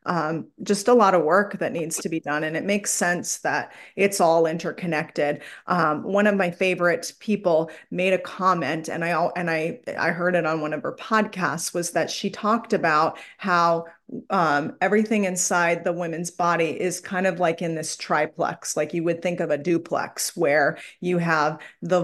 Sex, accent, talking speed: female, American, 195 wpm